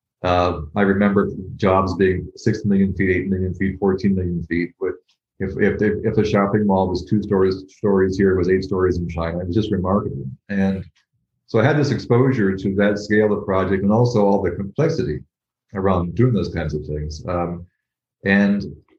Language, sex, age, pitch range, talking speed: English, male, 40-59, 90-105 Hz, 195 wpm